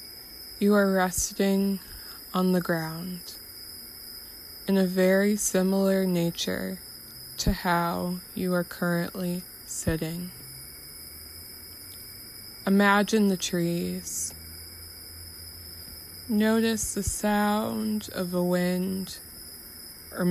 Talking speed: 80 wpm